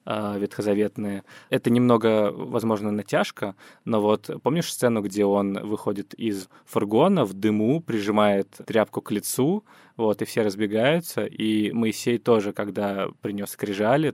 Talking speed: 125 wpm